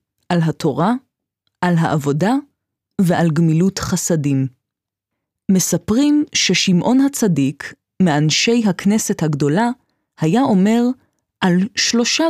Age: 20-39